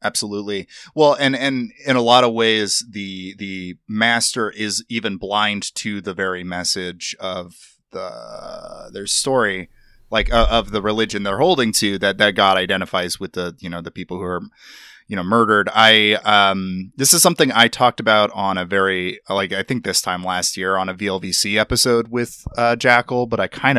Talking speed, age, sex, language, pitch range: 185 wpm, 30-49, male, English, 95-120 Hz